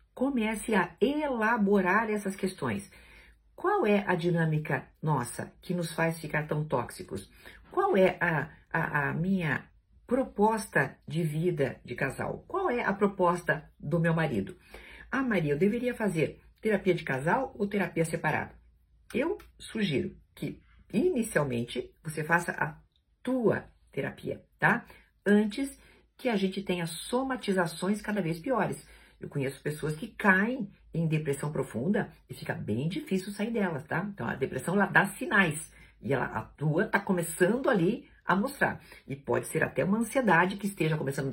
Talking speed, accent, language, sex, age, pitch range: 150 wpm, Brazilian, Portuguese, female, 50-69, 145-205 Hz